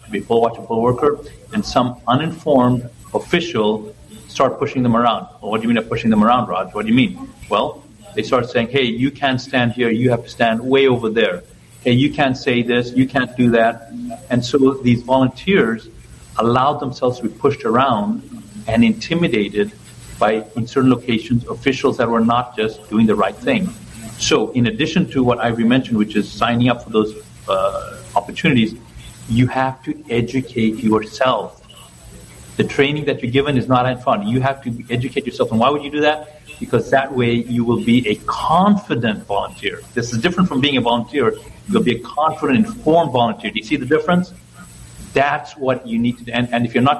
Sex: male